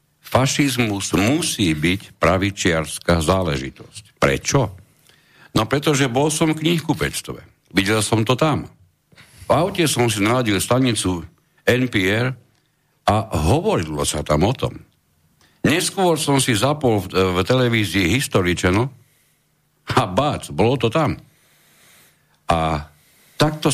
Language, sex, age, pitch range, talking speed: Slovak, male, 60-79, 85-125 Hz, 110 wpm